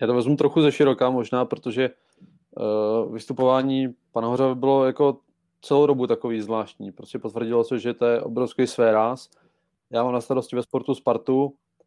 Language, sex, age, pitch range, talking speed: Czech, male, 20-39, 120-135 Hz, 165 wpm